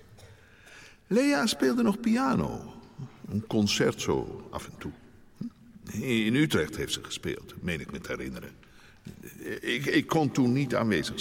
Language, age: Dutch, 60-79